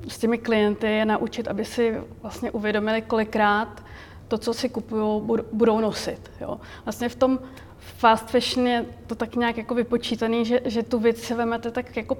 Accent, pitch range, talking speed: native, 215-235 Hz, 175 wpm